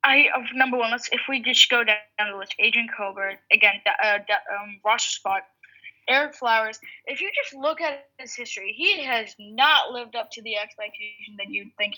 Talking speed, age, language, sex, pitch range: 205 wpm, 10-29, English, female, 215-275 Hz